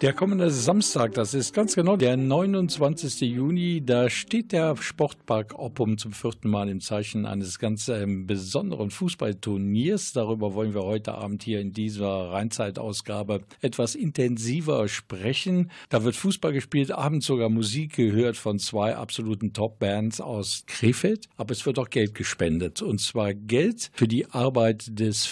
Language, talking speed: German, 150 wpm